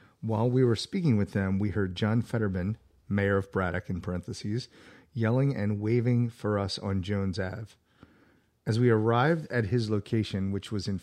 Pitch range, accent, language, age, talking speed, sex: 100-120 Hz, American, English, 40-59, 175 wpm, male